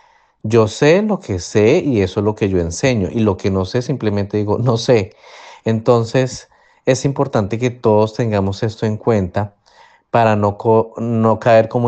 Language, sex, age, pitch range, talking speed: Spanish, male, 30-49, 100-115 Hz, 175 wpm